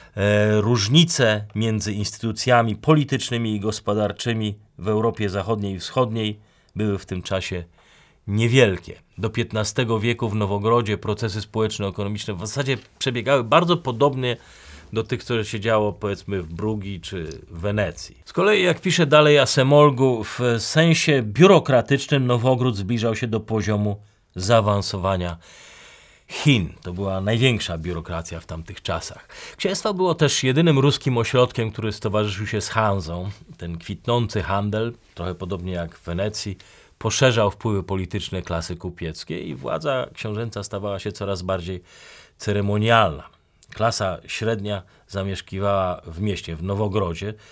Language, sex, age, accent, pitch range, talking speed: Polish, male, 40-59, native, 95-120 Hz, 130 wpm